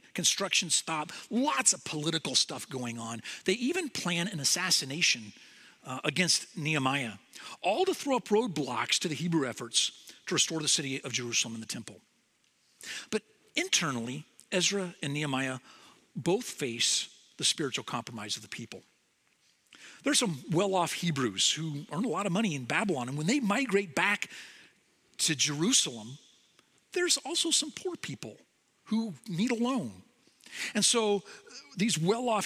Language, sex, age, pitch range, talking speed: English, male, 40-59, 150-220 Hz, 145 wpm